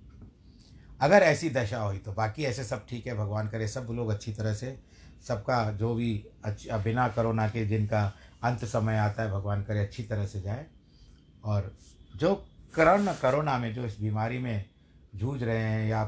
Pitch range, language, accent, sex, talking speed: 100-125 Hz, Hindi, native, male, 175 wpm